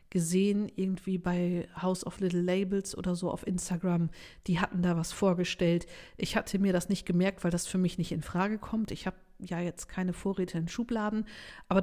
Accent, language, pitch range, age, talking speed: German, German, 175-195 Hz, 50-69, 200 wpm